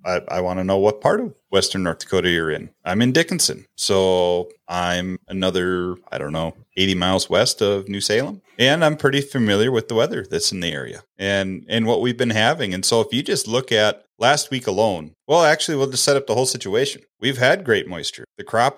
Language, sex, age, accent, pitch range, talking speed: English, male, 30-49, American, 95-120 Hz, 220 wpm